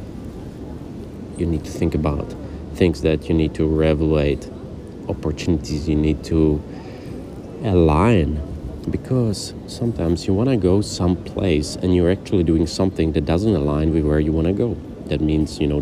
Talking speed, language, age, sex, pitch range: 155 wpm, English, 30-49, male, 75-95 Hz